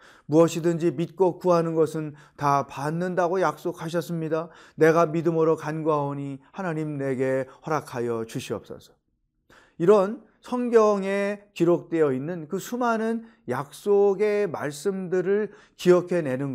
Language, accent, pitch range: Korean, native, 140-185 Hz